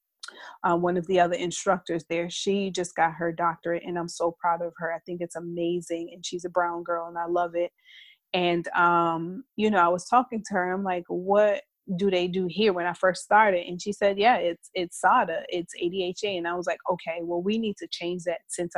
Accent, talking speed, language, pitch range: American, 230 wpm, English, 175-195 Hz